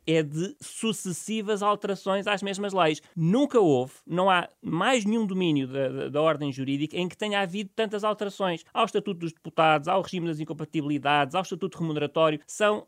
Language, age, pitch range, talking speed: Portuguese, 30-49, 140-185 Hz, 170 wpm